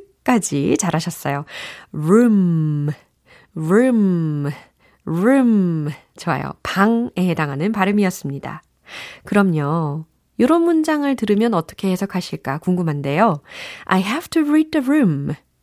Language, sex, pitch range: Korean, female, 165-255 Hz